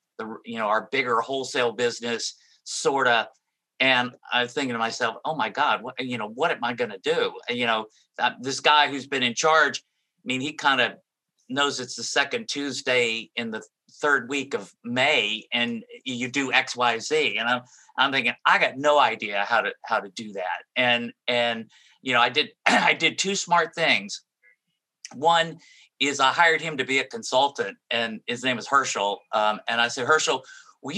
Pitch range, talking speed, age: 120-145 Hz, 190 wpm, 50-69